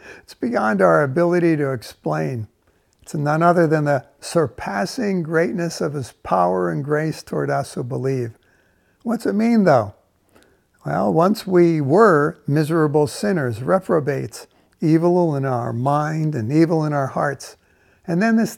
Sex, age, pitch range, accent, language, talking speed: male, 60-79, 140-185 Hz, American, English, 145 wpm